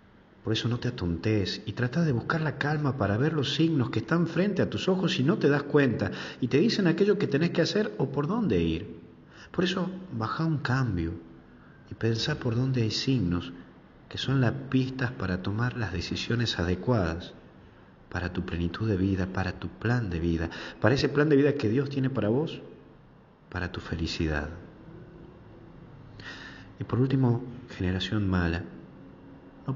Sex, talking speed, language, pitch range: male, 175 wpm, Spanish, 90-150 Hz